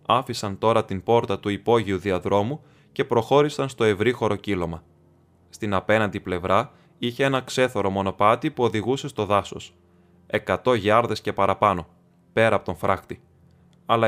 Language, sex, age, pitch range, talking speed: Greek, male, 20-39, 95-125 Hz, 135 wpm